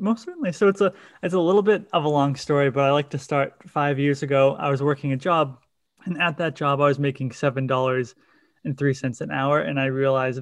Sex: male